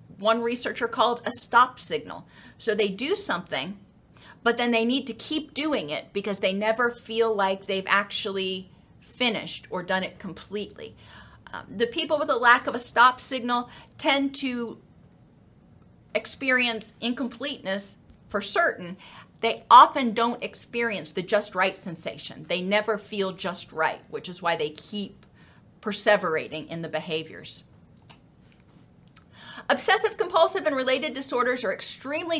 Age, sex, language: 40-59, female, English